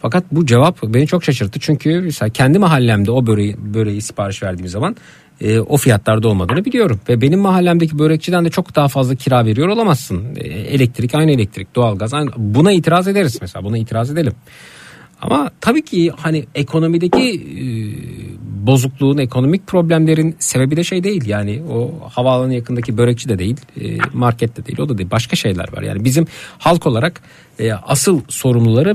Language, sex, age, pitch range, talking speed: Turkish, male, 50-69, 110-150 Hz, 165 wpm